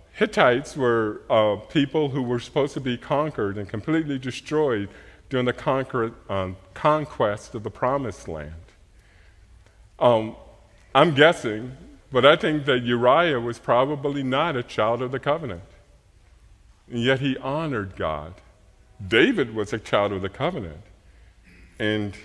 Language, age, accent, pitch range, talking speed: English, 50-69, American, 100-140 Hz, 140 wpm